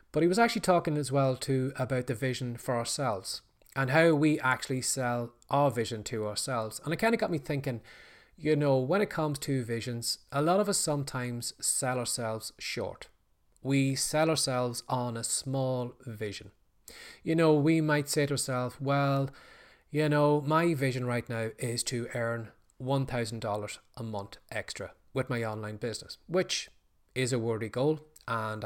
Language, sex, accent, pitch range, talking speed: English, male, Irish, 115-145 Hz, 170 wpm